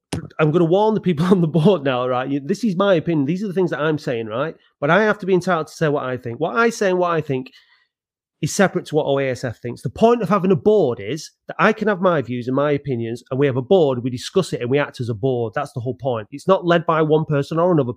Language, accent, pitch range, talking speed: English, British, 135-195 Hz, 295 wpm